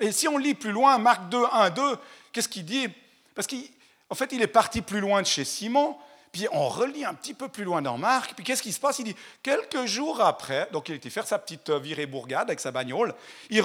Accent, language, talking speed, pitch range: French, French, 240 wpm, 170-275 Hz